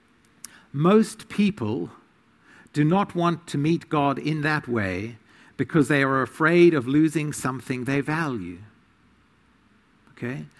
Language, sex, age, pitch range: English, male, 50-69, 140-195 Hz